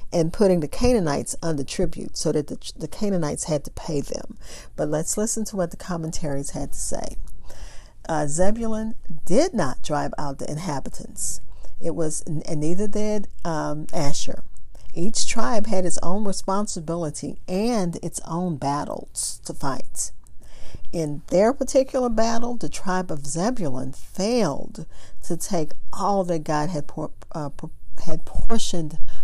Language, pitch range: English, 150-200 Hz